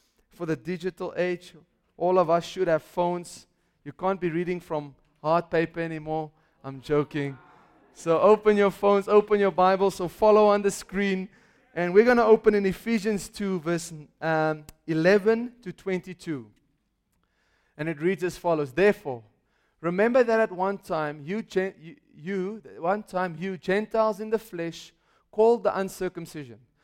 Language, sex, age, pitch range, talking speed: English, male, 30-49, 165-205 Hz, 155 wpm